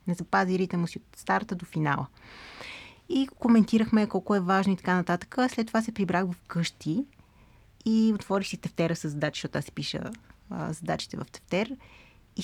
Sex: female